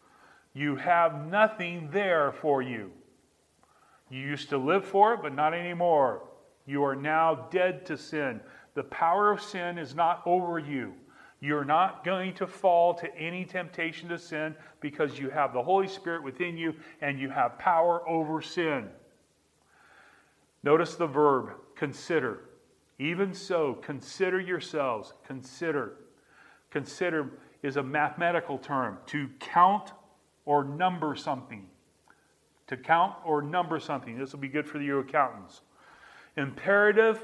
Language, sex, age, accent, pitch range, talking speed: English, male, 40-59, American, 150-180 Hz, 135 wpm